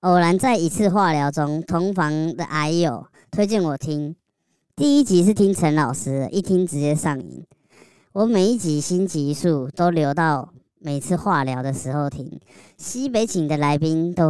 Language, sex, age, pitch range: Chinese, male, 20-39, 145-190 Hz